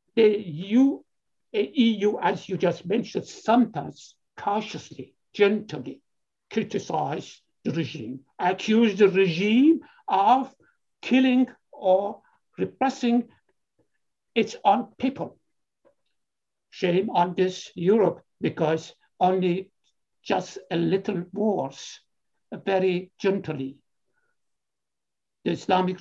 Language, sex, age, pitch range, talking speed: Persian, male, 60-79, 170-235 Hz, 85 wpm